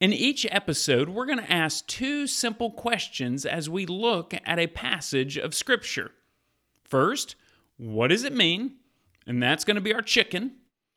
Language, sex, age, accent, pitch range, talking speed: English, male, 40-59, American, 135-215 Hz, 165 wpm